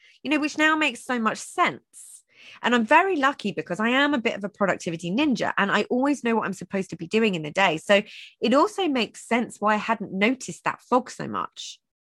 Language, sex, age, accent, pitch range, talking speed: English, female, 20-39, British, 175-255 Hz, 235 wpm